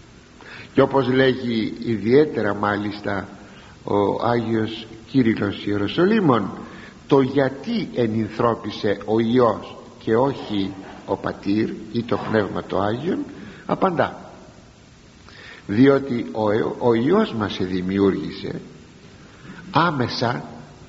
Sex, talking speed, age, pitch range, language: male, 85 wpm, 60-79, 105-135 Hz, Greek